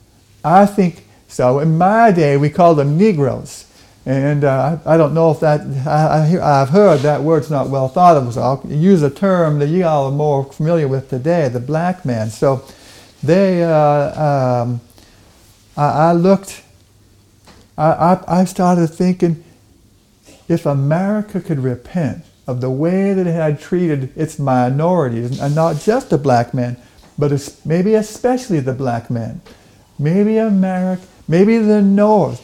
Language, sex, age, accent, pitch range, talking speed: English, male, 60-79, American, 130-180 Hz, 150 wpm